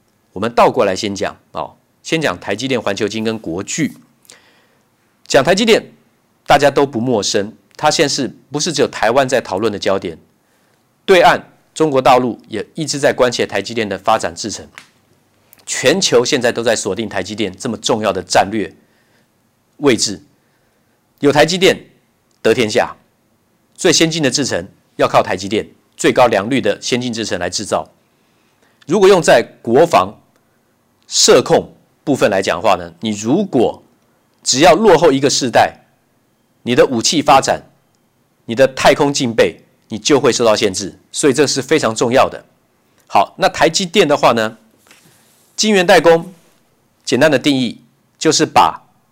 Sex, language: male, Chinese